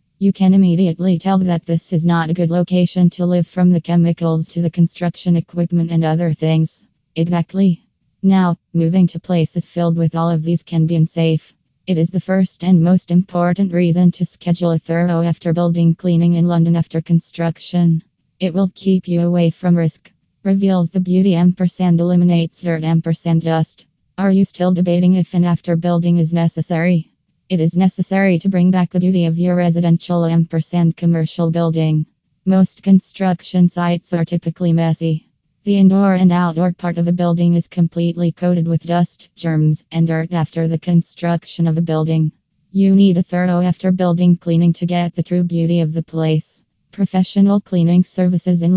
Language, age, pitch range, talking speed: English, 20-39, 165-180 Hz, 170 wpm